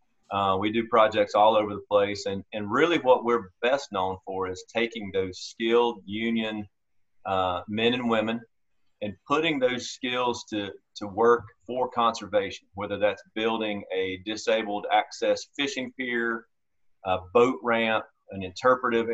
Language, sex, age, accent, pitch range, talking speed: English, male, 30-49, American, 100-120 Hz, 145 wpm